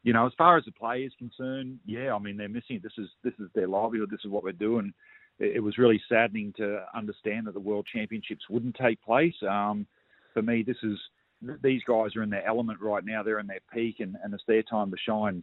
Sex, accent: male, Australian